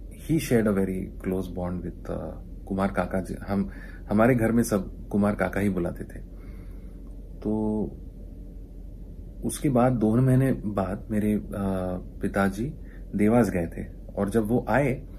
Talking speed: 140 wpm